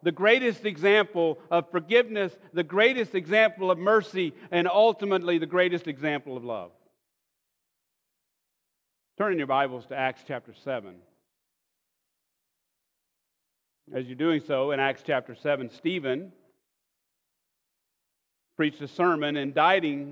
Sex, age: male, 40-59